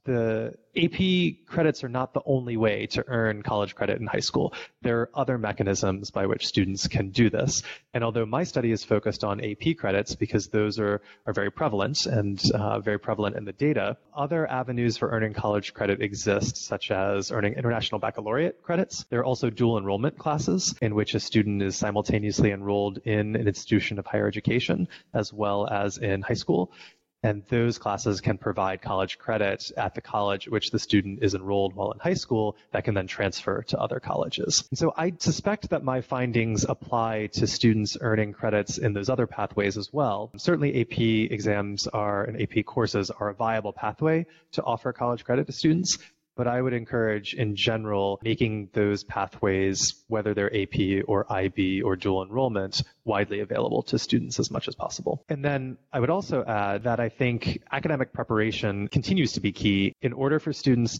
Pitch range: 100-125 Hz